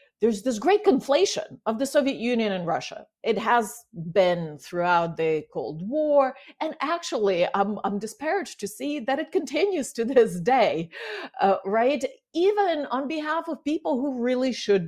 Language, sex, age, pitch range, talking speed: English, female, 50-69, 185-280 Hz, 160 wpm